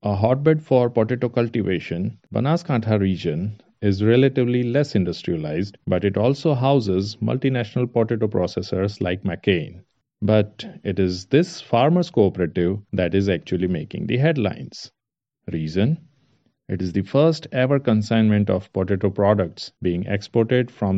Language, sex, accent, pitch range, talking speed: English, male, Indian, 95-125 Hz, 130 wpm